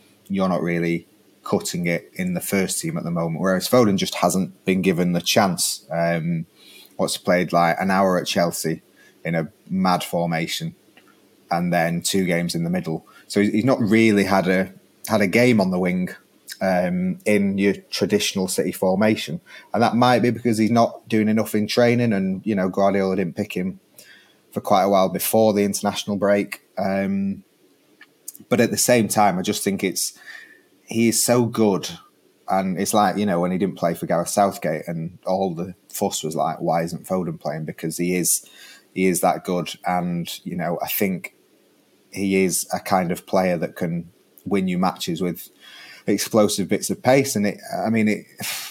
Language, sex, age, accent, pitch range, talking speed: English, male, 30-49, British, 90-110 Hz, 185 wpm